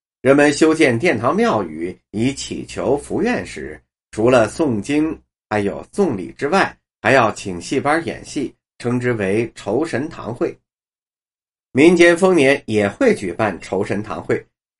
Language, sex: Chinese, male